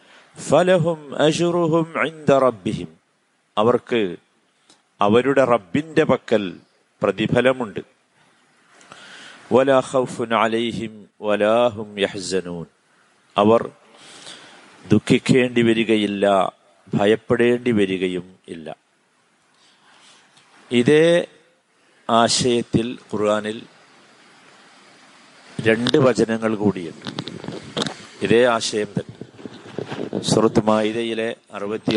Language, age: Malayalam, 50-69